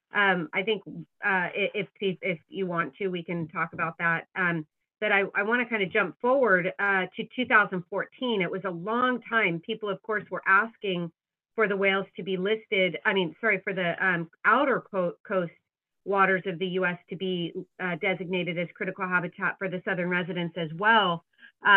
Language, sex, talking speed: English, female, 190 wpm